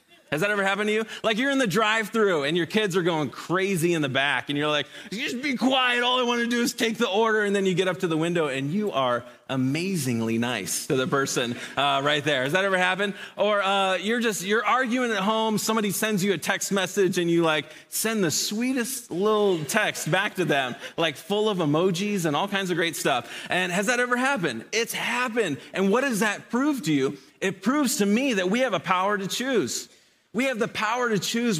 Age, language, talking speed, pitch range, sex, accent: 30-49, English, 235 wpm, 150-210 Hz, male, American